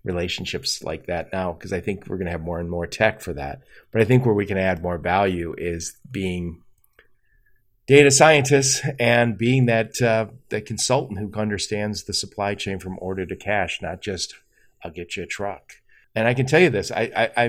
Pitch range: 95-120 Hz